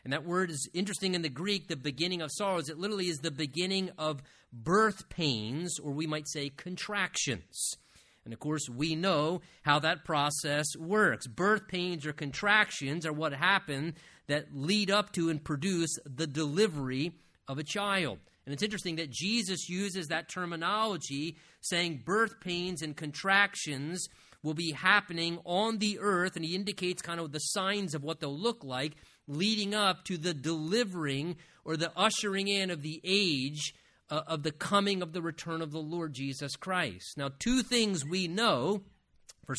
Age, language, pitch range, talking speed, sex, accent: 30-49, English, 150-195 Hz, 170 wpm, male, American